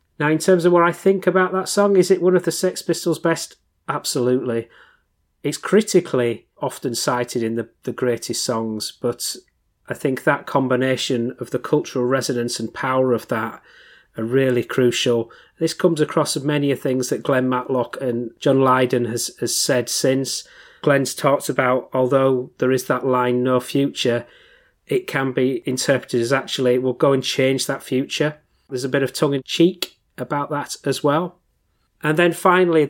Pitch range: 125-145 Hz